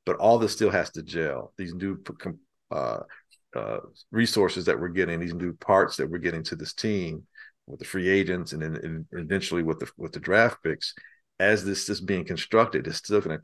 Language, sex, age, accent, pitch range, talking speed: English, male, 50-69, American, 90-125 Hz, 205 wpm